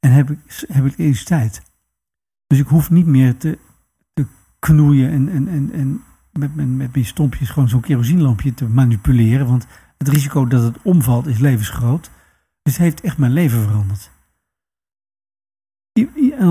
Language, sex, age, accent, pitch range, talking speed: Dutch, male, 50-69, Dutch, 120-145 Hz, 165 wpm